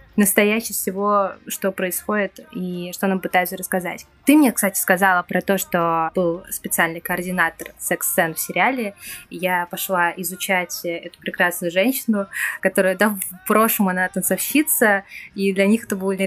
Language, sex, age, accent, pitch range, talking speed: Russian, female, 20-39, native, 185-220 Hz, 150 wpm